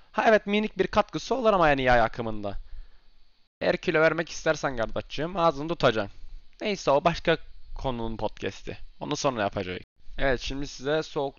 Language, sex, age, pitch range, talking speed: Turkish, male, 20-39, 105-145 Hz, 155 wpm